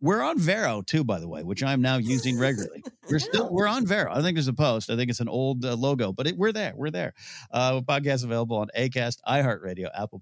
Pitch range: 105-150 Hz